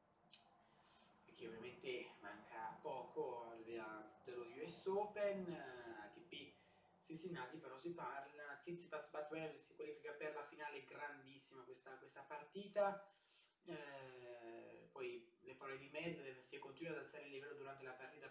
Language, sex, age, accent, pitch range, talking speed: Italian, male, 20-39, native, 115-195 Hz, 140 wpm